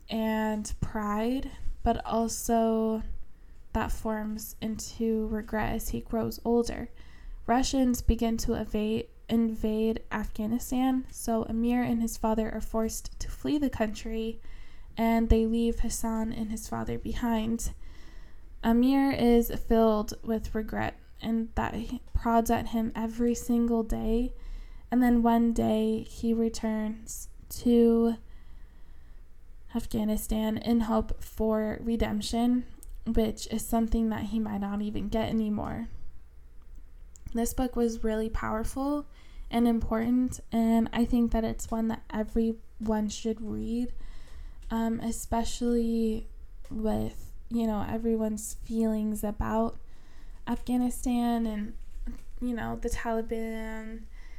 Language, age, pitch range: English, 10-29, 215-230 Hz